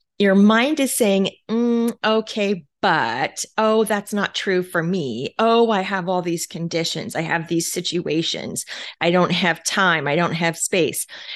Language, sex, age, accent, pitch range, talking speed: English, female, 30-49, American, 170-215 Hz, 165 wpm